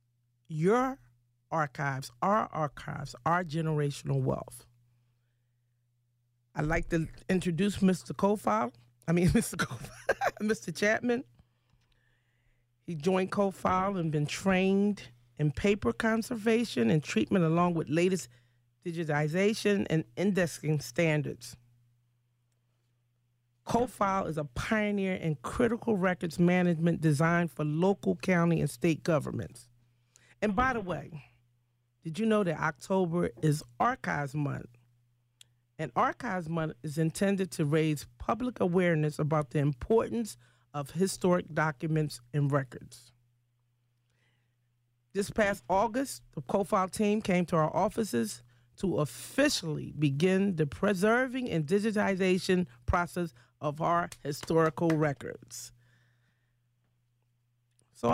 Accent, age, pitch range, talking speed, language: American, 40-59, 120-190 Hz, 105 wpm, English